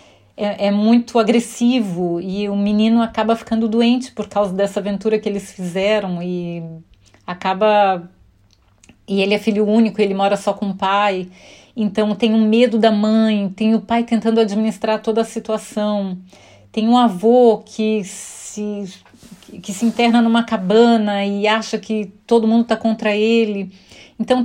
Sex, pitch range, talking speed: female, 200-235 Hz, 145 wpm